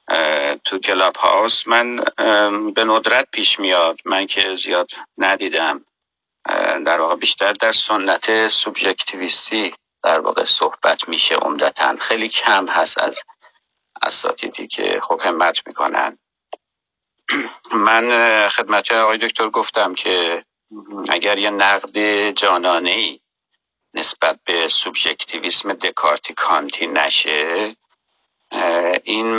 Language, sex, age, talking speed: Persian, male, 50-69, 100 wpm